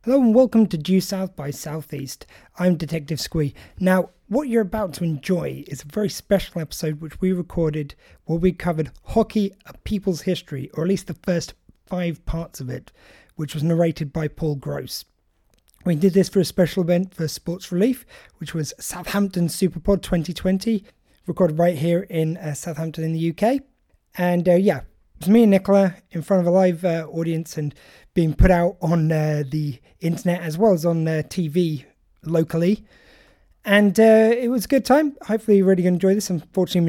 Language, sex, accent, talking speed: English, male, British, 185 wpm